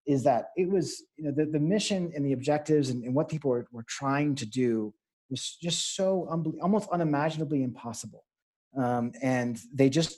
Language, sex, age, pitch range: English, male, 30-49, 125-155 Hz